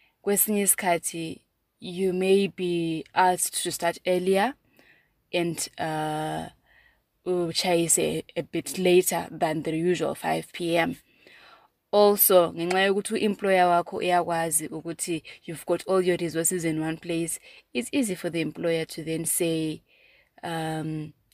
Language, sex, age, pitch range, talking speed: English, female, 20-39, 165-185 Hz, 100 wpm